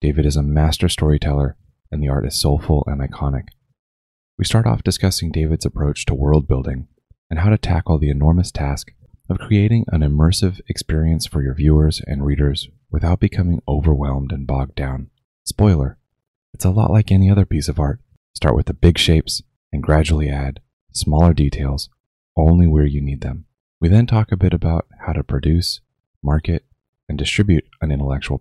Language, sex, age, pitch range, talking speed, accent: English, male, 30-49, 70-90 Hz, 175 wpm, American